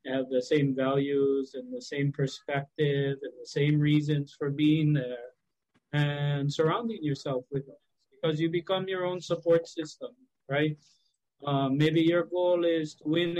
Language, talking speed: English, 155 wpm